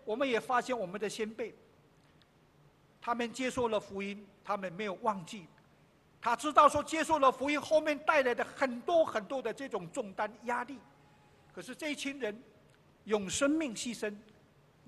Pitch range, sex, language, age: 215-320 Hz, male, Chinese, 50-69